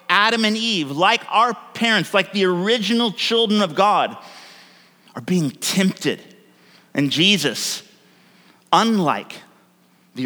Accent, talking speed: American, 110 wpm